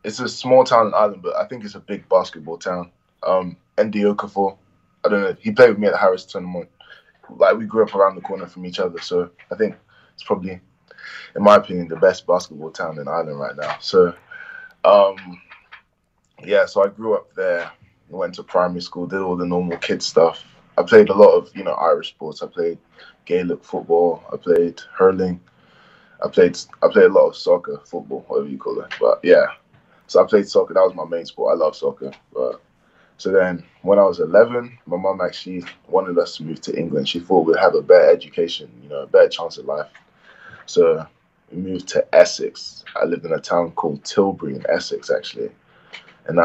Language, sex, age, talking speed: English, male, 10-29, 205 wpm